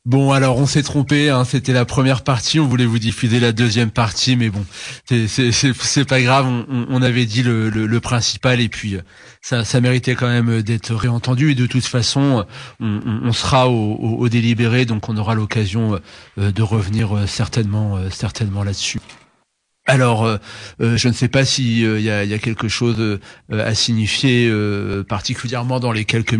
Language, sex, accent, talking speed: French, male, French, 195 wpm